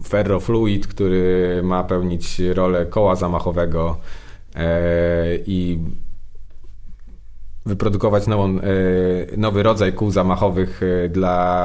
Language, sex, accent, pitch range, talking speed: Polish, male, native, 85-100 Hz, 70 wpm